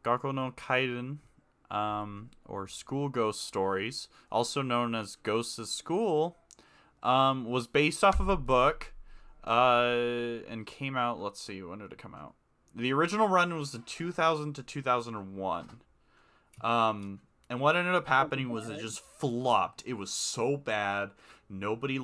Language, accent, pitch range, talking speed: English, American, 110-135 Hz, 145 wpm